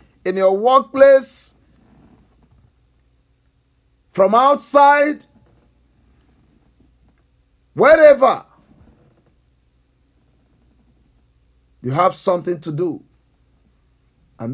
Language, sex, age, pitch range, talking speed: English, male, 50-69, 185-280 Hz, 50 wpm